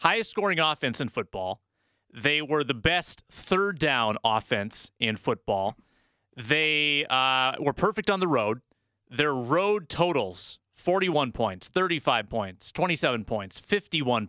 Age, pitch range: 30-49, 125-170 Hz